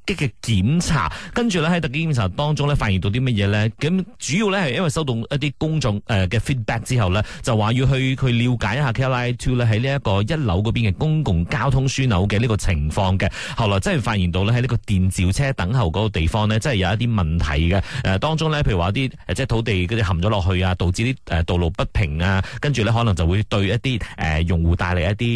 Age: 30-49